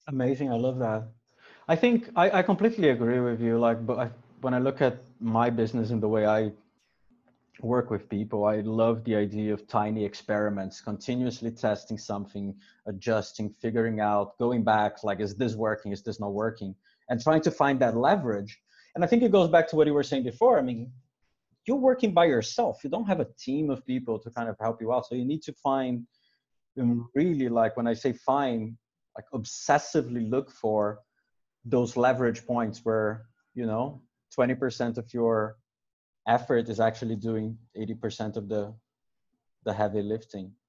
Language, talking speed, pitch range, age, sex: English, 180 wpm, 110-135 Hz, 30-49, male